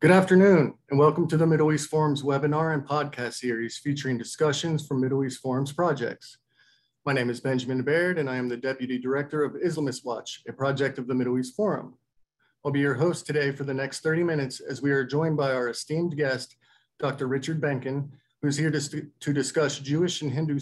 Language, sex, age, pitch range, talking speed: English, male, 40-59, 130-155 Hz, 205 wpm